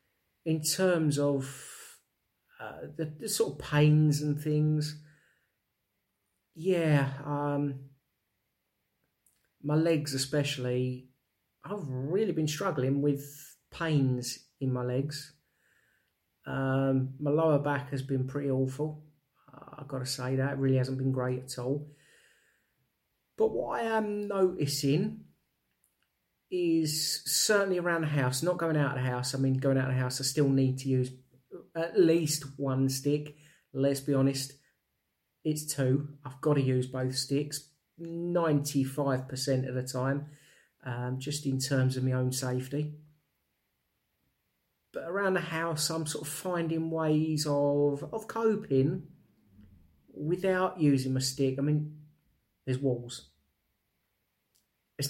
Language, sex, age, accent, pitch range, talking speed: English, male, 40-59, British, 130-155 Hz, 130 wpm